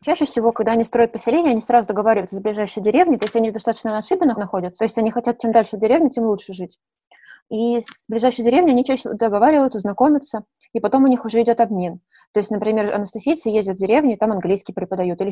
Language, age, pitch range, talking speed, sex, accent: Russian, 20-39, 190-230 Hz, 215 wpm, female, native